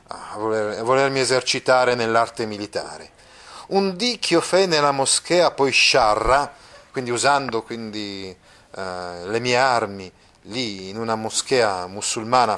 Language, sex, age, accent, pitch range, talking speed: Italian, male, 30-49, native, 110-180 Hz, 125 wpm